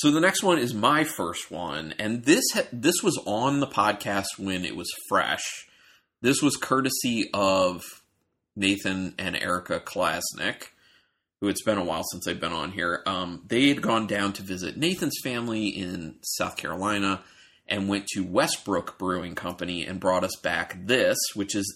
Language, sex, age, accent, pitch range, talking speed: English, male, 30-49, American, 95-120 Hz, 175 wpm